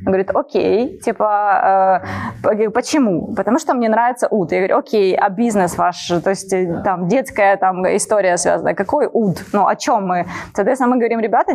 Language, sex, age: Ukrainian, female, 20-39